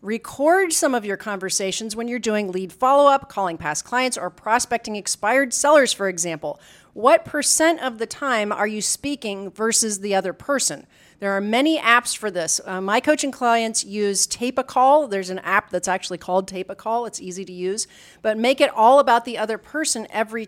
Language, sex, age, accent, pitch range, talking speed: English, female, 40-59, American, 185-245 Hz, 195 wpm